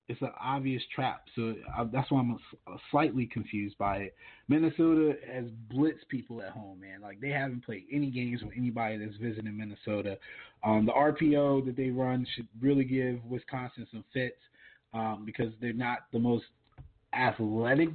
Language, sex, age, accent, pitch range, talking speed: English, male, 20-39, American, 115-145 Hz, 165 wpm